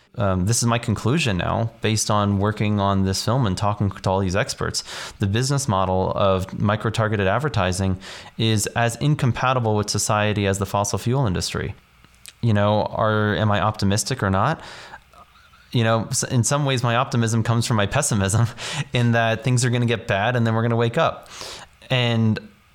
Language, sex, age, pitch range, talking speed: English, male, 30-49, 100-120 Hz, 180 wpm